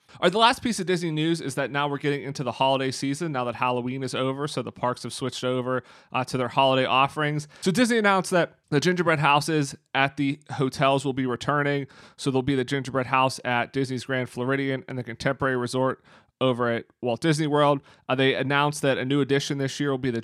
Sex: male